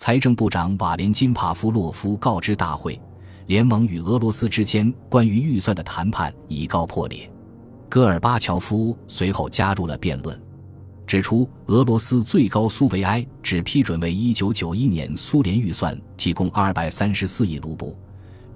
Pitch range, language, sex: 90-115 Hz, Chinese, male